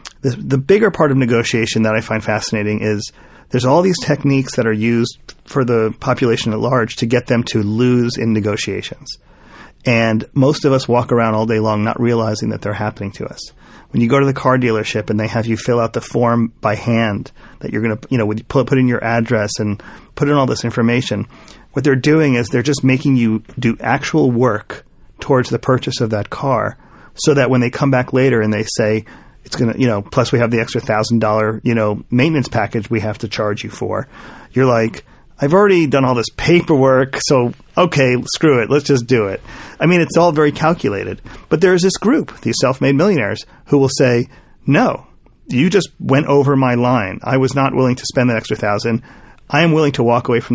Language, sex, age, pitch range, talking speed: English, male, 30-49, 115-140 Hz, 215 wpm